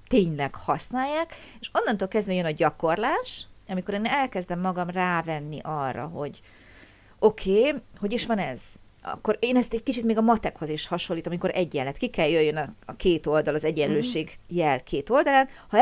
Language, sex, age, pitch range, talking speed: Hungarian, female, 30-49, 165-230 Hz, 175 wpm